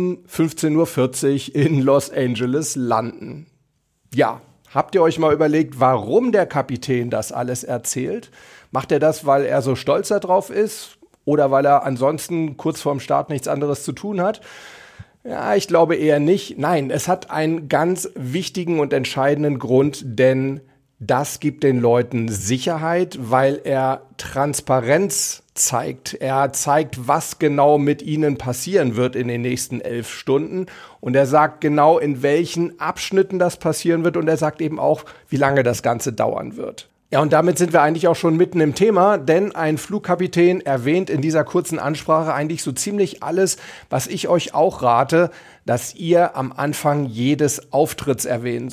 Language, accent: German, German